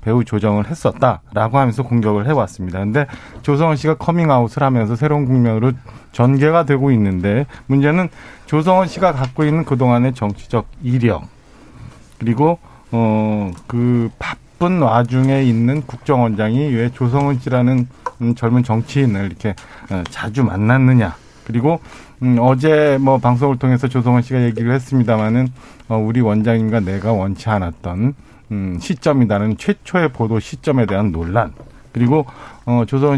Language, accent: Korean, native